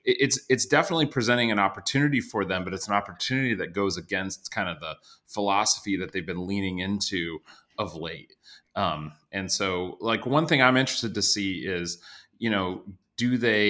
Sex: male